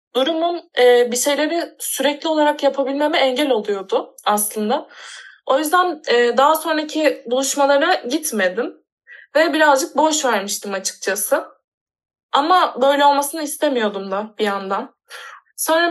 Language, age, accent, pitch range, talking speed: Turkish, 20-39, native, 245-310 Hz, 105 wpm